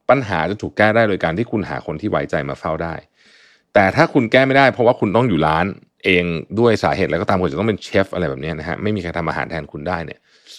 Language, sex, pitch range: Thai, male, 85-125 Hz